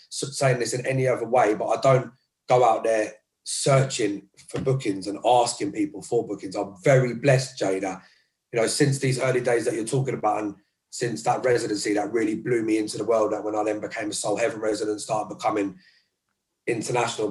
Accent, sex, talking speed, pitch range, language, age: British, male, 200 wpm, 110-140 Hz, English, 30-49